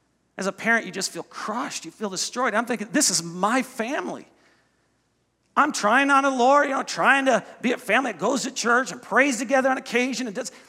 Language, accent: English, American